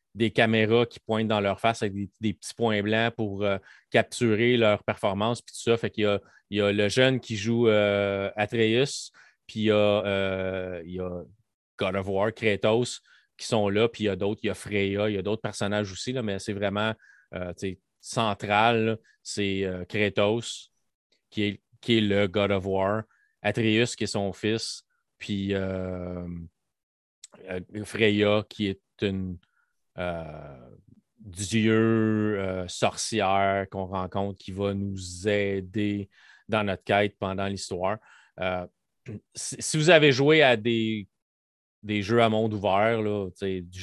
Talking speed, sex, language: 165 wpm, male, French